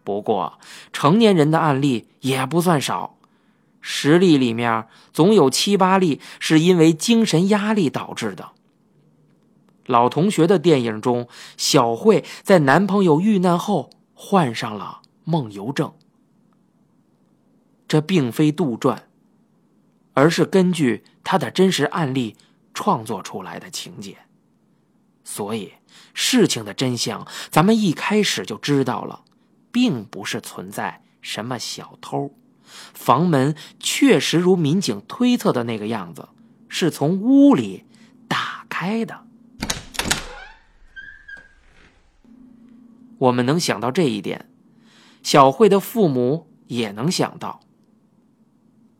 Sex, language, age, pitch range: male, Chinese, 20-39, 135-220 Hz